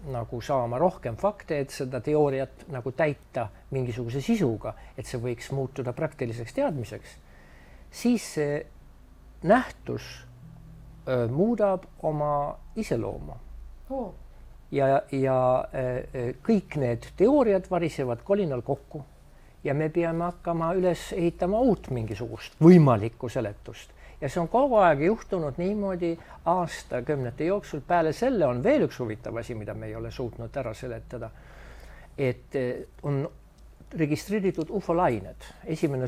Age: 60-79